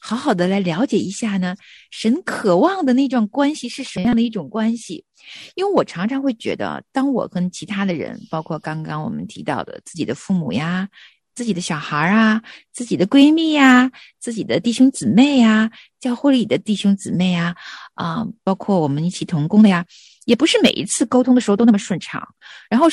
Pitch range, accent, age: 195-275 Hz, native, 50-69